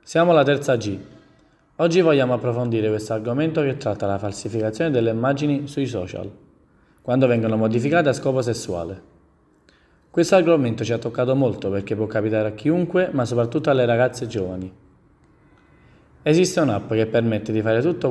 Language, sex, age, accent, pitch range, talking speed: Italian, male, 20-39, native, 105-140 Hz, 150 wpm